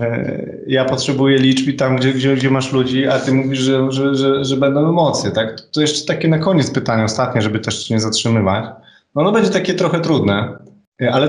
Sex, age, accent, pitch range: male, 20-39, native, 115-135 Hz